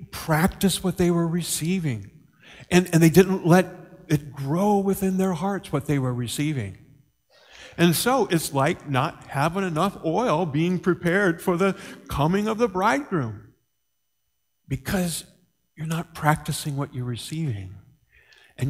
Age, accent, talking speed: 50-69, American, 140 wpm